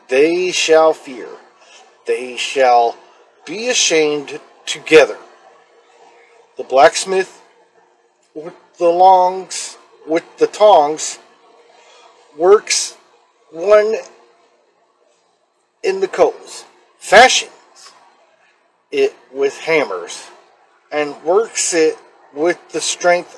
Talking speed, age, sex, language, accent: 80 wpm, 50-69, male, English, American